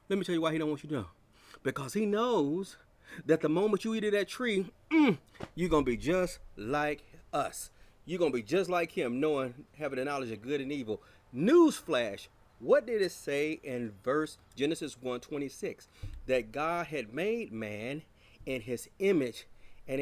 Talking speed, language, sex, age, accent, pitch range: 185 wpm, English, male, 30-49, American, 120-170 Hz